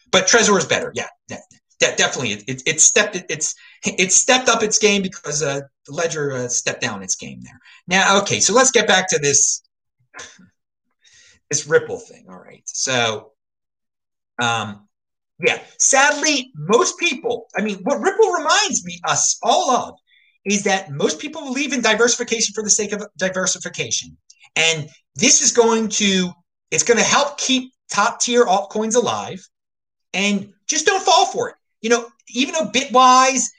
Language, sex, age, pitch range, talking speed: English, male, 30-49, 200-320 Hz, 165 wpm